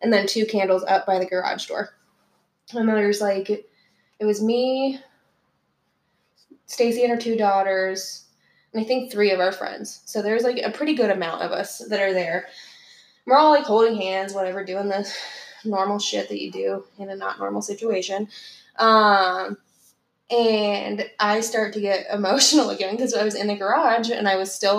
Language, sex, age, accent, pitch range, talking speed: English, female, 10-29, American, 195-225 Hz, 180 wpm